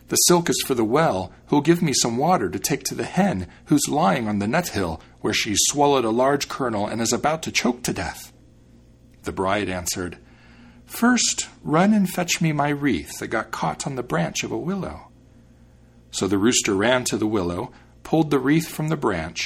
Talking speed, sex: 205 wpm, male